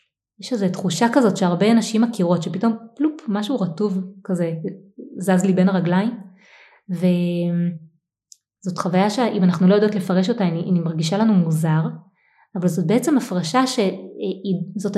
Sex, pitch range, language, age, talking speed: female, 170-210 Hz, Hebrew, 20-39, 135 wpm